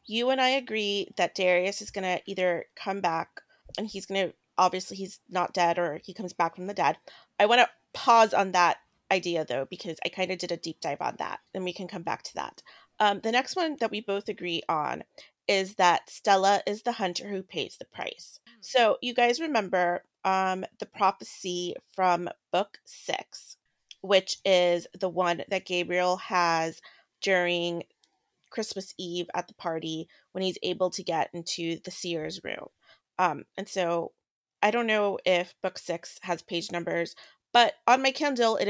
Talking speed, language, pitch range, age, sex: 185 wpm, English, 175-205 Hz, 30-49, female